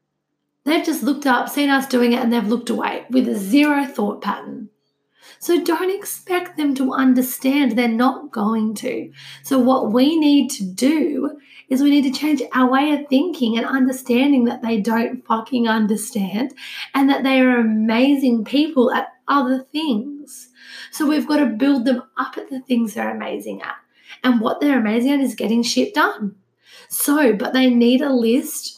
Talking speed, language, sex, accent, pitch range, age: 180 wpm, English, female, Australian, 235-290 Hz, 30-49